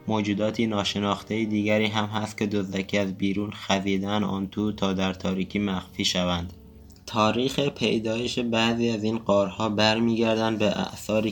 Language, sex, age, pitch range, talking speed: Persian, male, 20-39, 100-110 Hz, 135 wpm